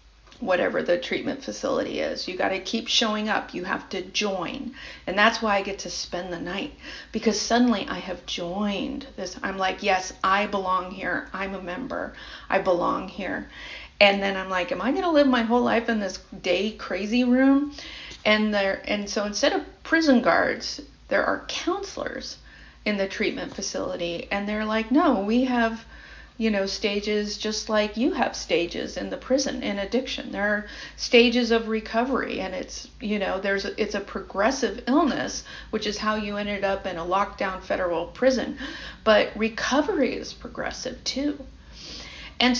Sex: female